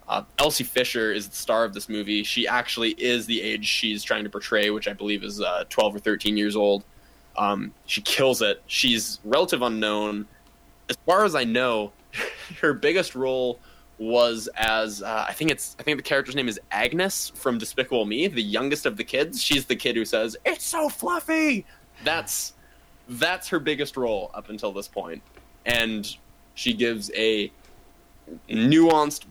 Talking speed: 175 wpm